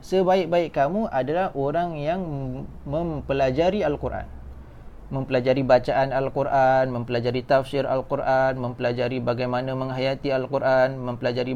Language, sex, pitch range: Malay, male, 130-155 Hz